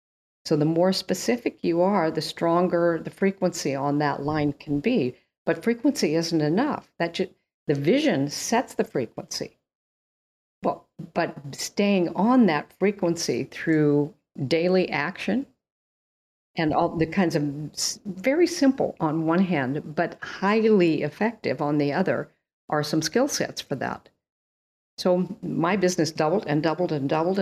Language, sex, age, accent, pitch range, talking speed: English, female, 50-69, American, 145-180 Hz, 140 wpm